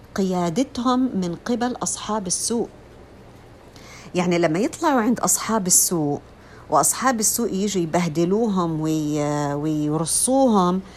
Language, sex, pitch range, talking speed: Arabic, female, 175-275 Hz, 90 wpm